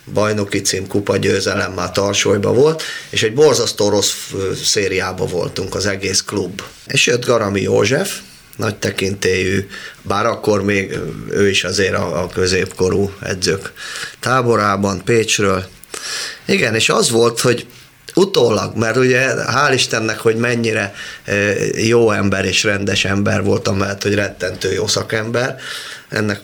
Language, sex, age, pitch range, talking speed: Hungarian, male, 30-49, 100-125 Hz, 135 wpm